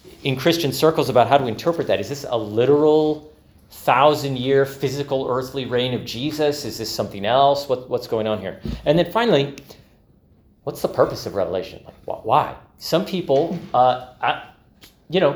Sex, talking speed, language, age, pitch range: male, 155 wpm, English, 40-59, 120-165 Hz